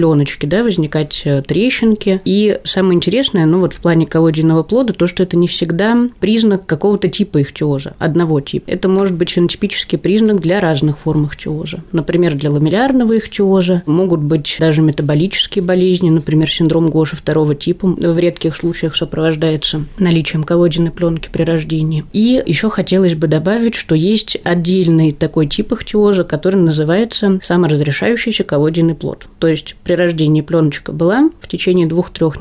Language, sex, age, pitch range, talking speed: Russian, female, 20-39, 160-195 Hz, 150 wpm